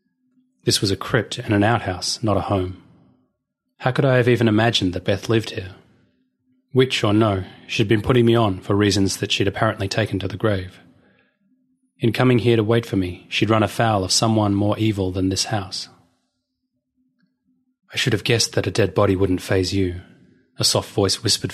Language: English